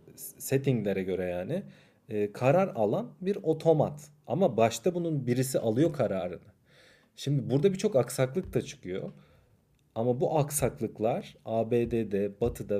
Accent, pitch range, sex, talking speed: native, 110-150 Hz, male, 115 wpm